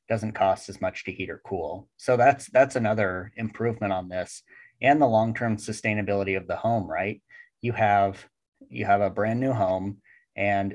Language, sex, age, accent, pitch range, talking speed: English, male, 30-49, American, 100-120 Hz, 180 wpm